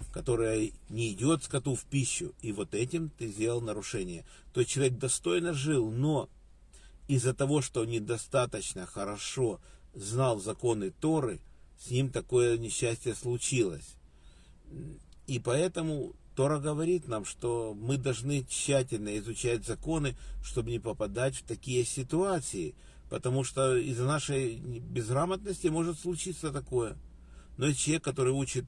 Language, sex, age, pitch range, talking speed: Russian, male, 50-69, 110-140 Hz, 125 wpm